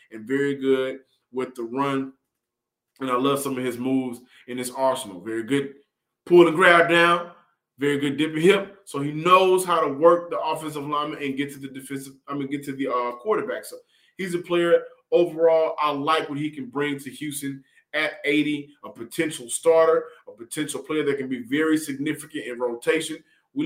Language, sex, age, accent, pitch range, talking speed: English, male, 20-39, American, 140-175 Hz, 195 wpm